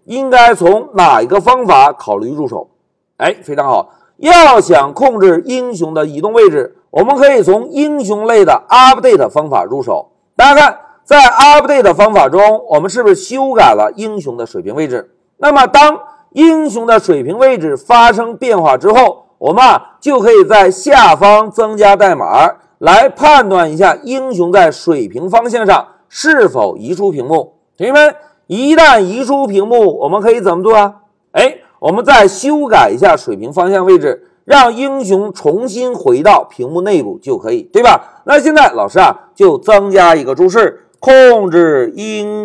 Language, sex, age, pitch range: Chinese, male, 50-69, 205-305 Hz